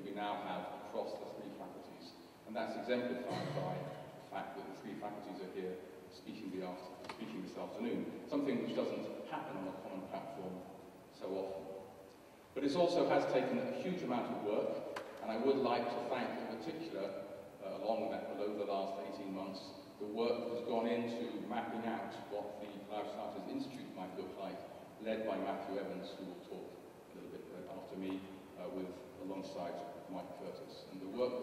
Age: 40-59